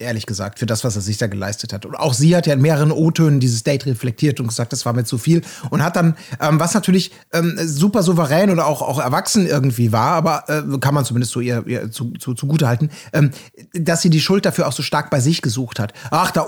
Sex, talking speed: male, 250 wpm